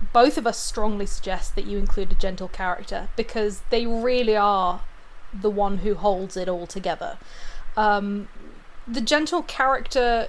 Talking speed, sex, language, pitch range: 150 wpm, female, English, 205-250 Hz